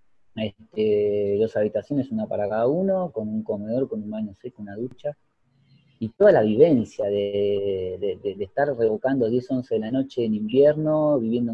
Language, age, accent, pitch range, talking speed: Spanish, 20-39, Argentinian, 105-140 Hz, 175 wpm